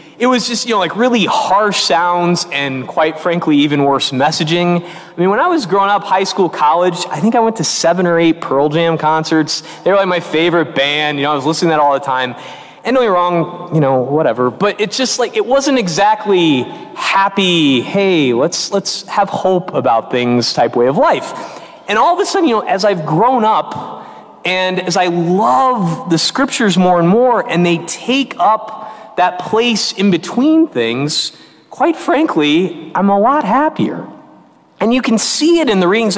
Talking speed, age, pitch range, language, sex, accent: 200 wpm, 20-39, 165-220 Hz, English, male, American